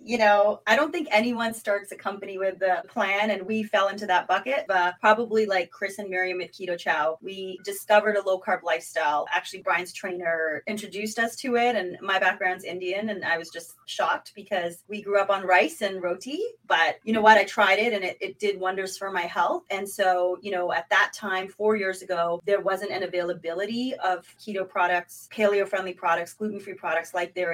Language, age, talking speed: English, 30-49, 205 wpm